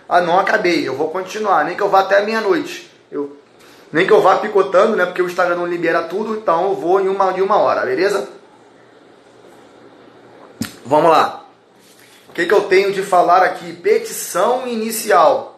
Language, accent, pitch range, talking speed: Portuguese, Brazilian, 170-230 Hz, 180 wpm